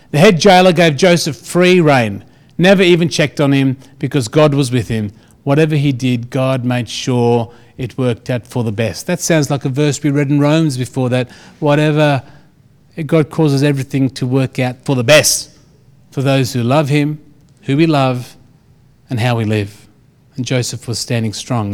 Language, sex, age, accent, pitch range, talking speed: Russian, male, 40-59, Australian, 135-200 Hz, 185 wpm